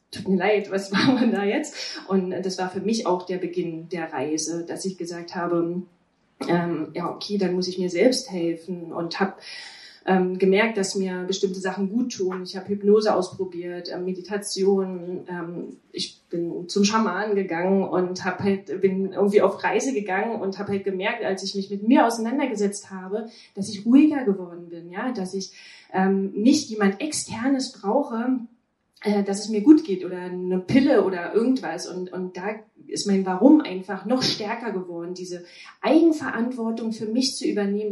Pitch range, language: 180-215 Hz, German